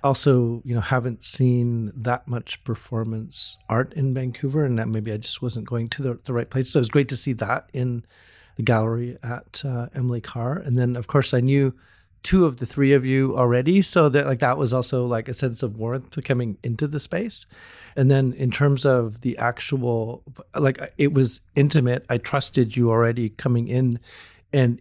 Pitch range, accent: 115-135 Hz, American